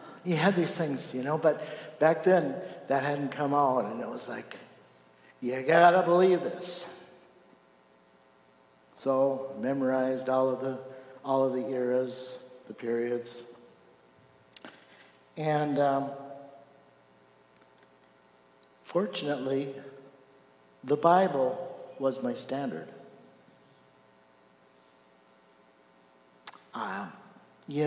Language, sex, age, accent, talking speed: English, male, 60-79, American, 95 wpm